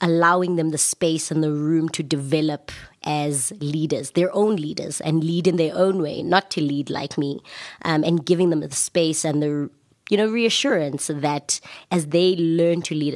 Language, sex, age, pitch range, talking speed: English, female, 20-39, 145-175 Hz, 190 wpm